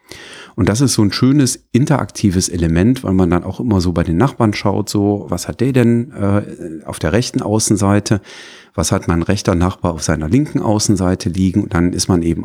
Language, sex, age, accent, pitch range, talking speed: German, male, 40-59, German, 85-110 Hz, 205 wpm